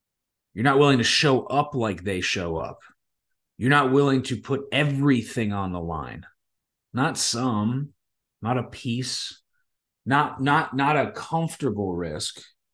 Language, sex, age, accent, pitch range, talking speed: English, male, 30-49, American, 105-140 Hz, 140 wpm